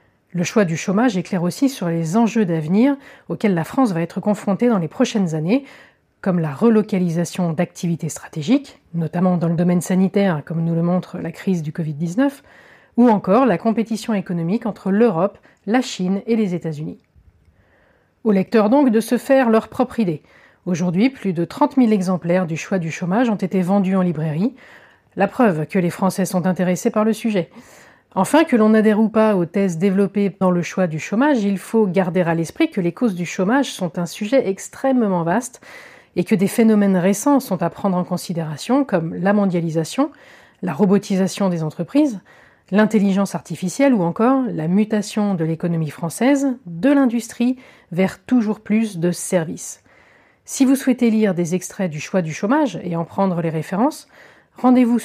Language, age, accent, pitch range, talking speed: French, 30-49, French, 175-235 Hz, 180 wpm